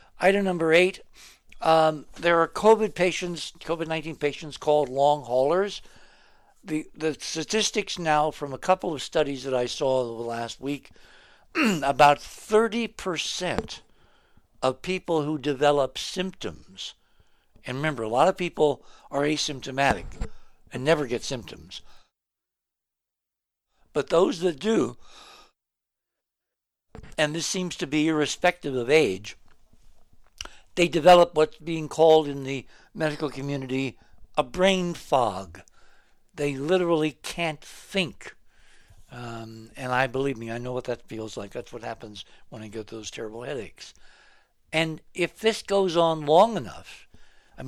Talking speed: 130 wpm